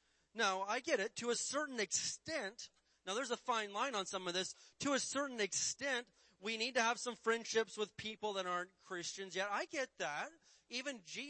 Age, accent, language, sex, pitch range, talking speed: 30-49, American, English, male, 175-220 Hz, 200 wpm